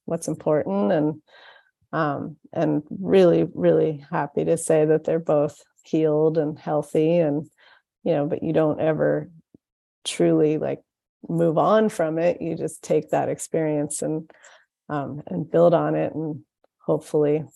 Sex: female